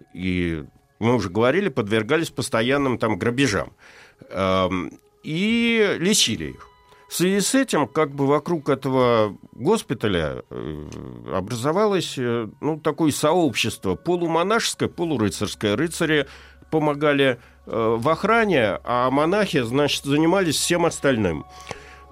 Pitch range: 110-170 Hz